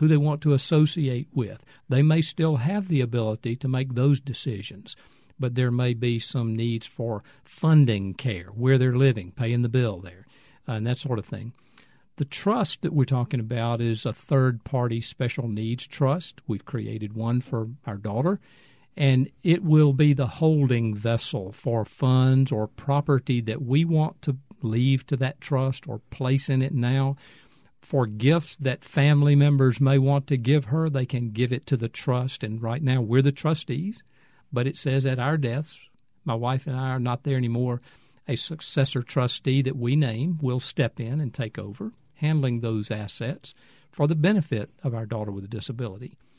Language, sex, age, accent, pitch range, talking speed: English, male, 50-69, American, 120-145 Hz, 180 wpm